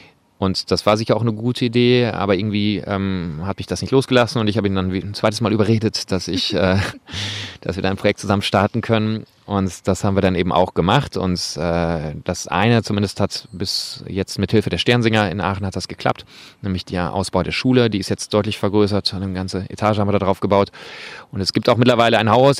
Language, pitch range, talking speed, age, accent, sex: German, 95-110 Hz, 230 wpm, 30-49, German, male